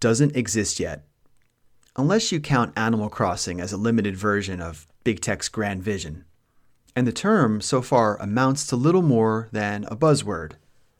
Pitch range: 100-145 Hz